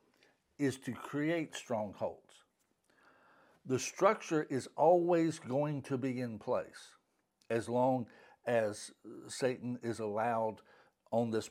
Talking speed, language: 110 wpm, English